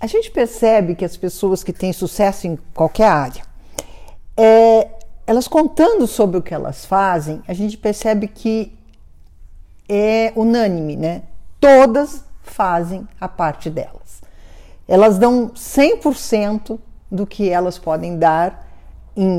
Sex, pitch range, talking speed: female, 170-225 Hz, 125 wpm